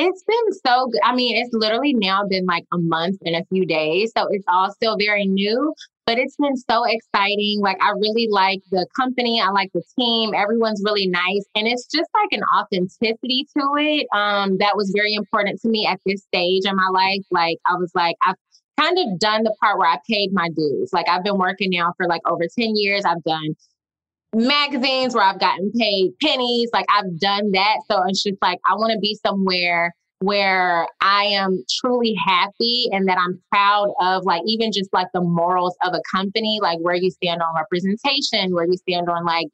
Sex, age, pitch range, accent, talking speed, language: female, 20-39, 180-220 Hz, American, 210 wpm, English